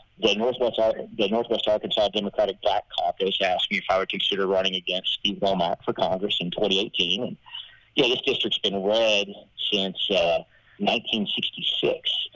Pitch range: 95-110 Hz